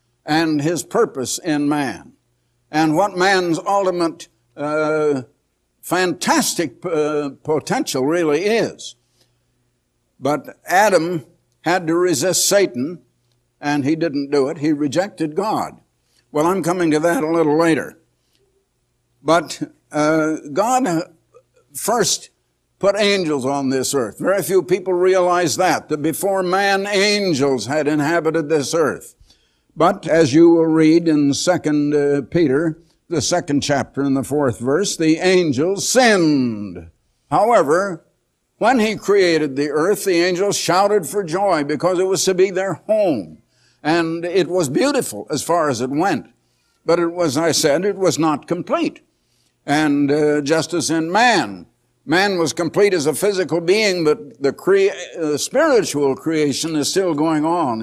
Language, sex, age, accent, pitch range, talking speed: English, male, 60-79, American, 145-185 Hz, 140 wpm